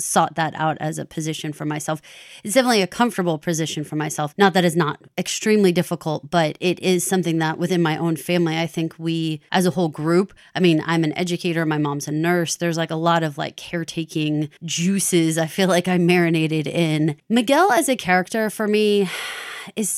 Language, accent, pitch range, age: English, American, 165-225 Hz, 30-49